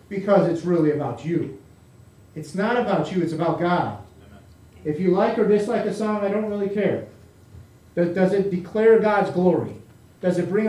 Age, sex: 40-59, male